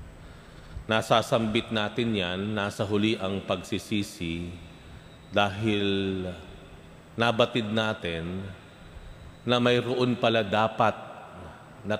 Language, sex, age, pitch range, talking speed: Filipino, male, 40-59, 90-110 Hz, 75 wpm